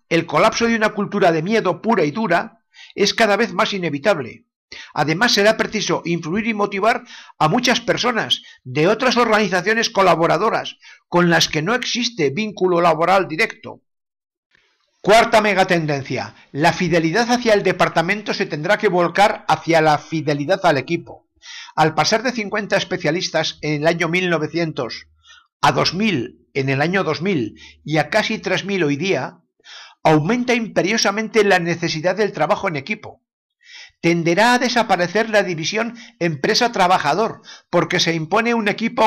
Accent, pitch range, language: Spanish, 165-220 Hz, Spanish